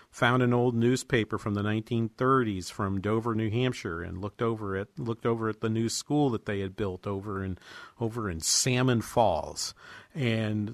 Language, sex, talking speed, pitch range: English, male, 180 wpm, 110-135 Hz